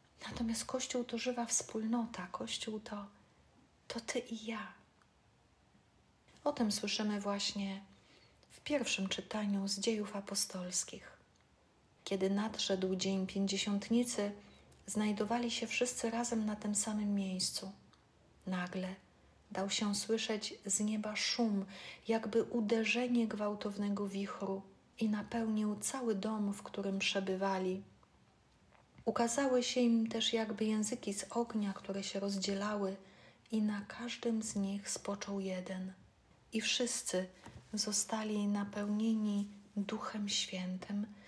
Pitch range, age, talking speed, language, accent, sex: 195-230 Hz, 40-59, 110 wpm, Polish, native, female